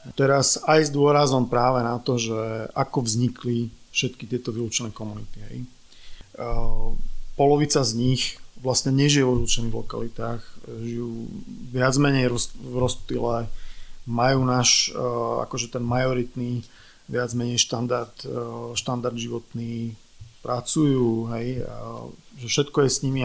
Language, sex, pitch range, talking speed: Slovak, male, 120-135 Hz, 110 wpm